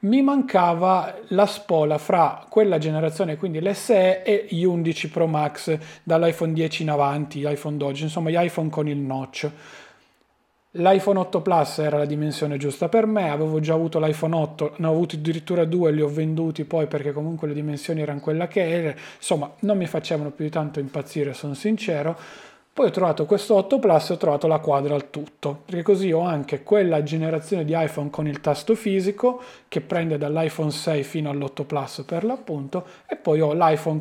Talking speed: 185 wpm